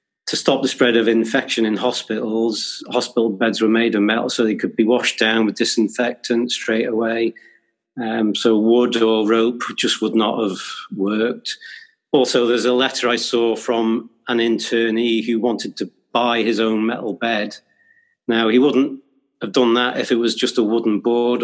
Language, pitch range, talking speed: English, 110-120 Hz, 180 wpm